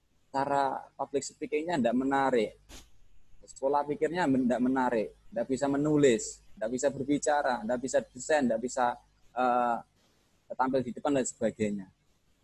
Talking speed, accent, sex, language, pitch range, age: 120 wpm, native, male, Indonesian, 110-145 Hz, 20-39